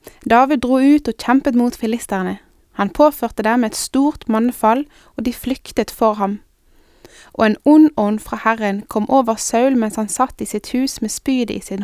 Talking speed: 180 wpm